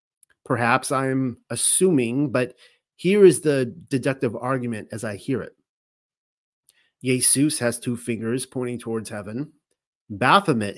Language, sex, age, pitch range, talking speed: English, male, 30-49, 120-155 Hz, 115 wpm